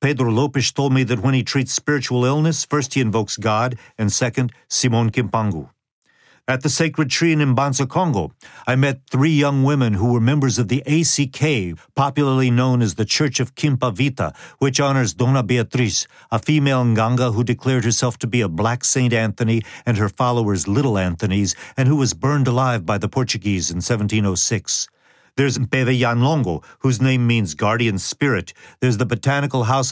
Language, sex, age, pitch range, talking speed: English, male, 50-69, 110-135 Hz, 175 wpm